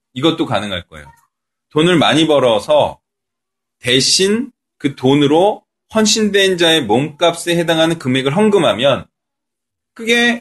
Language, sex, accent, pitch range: Korean, male, native, 135-205 Hz